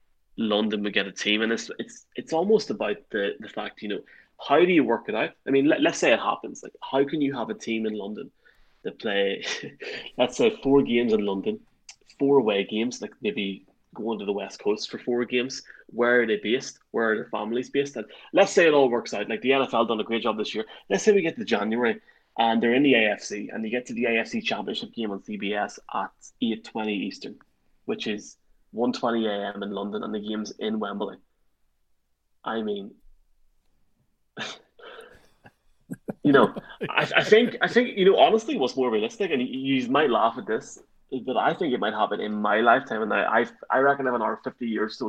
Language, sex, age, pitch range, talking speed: English, male, 20-39, 105-140 Hz, 220 wpm